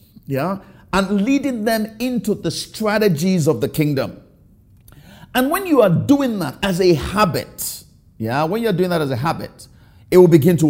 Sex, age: male, 50-69